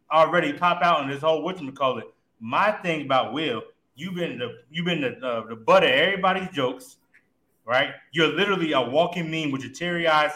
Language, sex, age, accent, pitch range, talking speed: English, male, 20-39, American, 135-165 Hz, 190 wpm